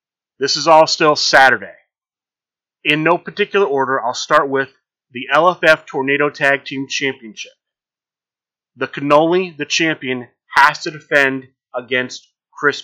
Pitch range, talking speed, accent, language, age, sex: 130-155 Hz, 125 wpm, American, English, 30-49, male